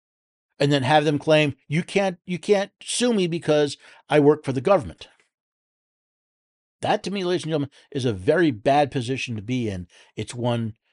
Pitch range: 120-175 Hz